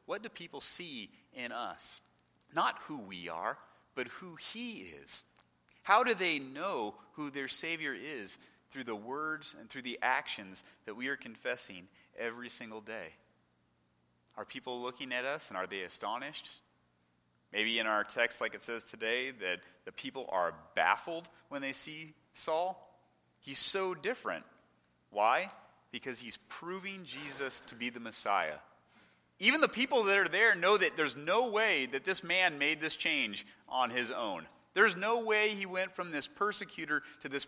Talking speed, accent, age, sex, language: 165 wpm, American, 30-49, male, English